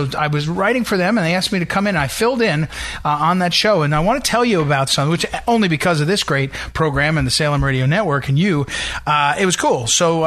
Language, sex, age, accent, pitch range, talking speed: English, male, 40-59, American, 140-175 Hz, 280 wpm